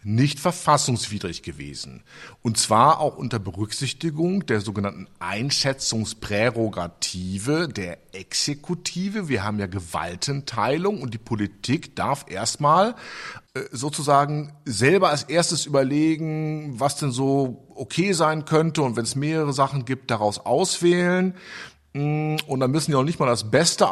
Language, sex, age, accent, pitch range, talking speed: German, male, 50-69, German, 110-155 Hz, 125 wpm